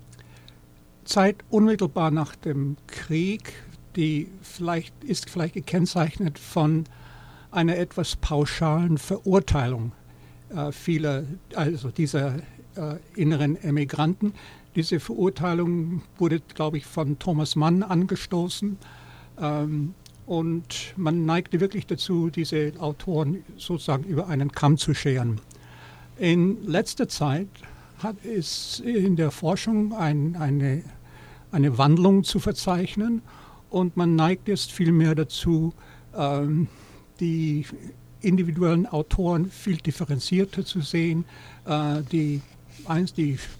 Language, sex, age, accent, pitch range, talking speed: English, male, 60-79, German, 140-175 Hz, 100 wpm